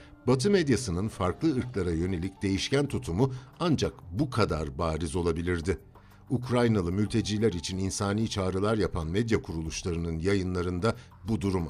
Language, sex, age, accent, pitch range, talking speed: Turkish, male, 60-79, native, 90-130 Hz, 120 wpm